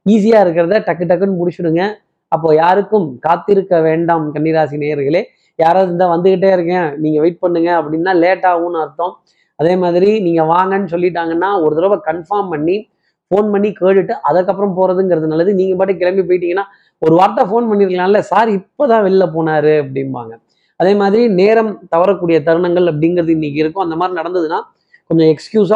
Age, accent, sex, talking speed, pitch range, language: 20-39, native, male, 140 wpm, 160-195 Hz, Tamil